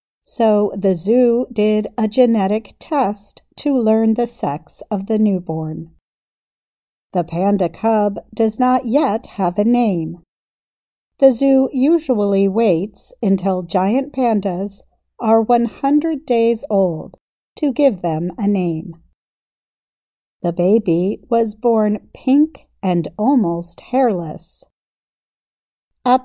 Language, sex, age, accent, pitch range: Chinese, female, 50-69, American, 180-240 Hz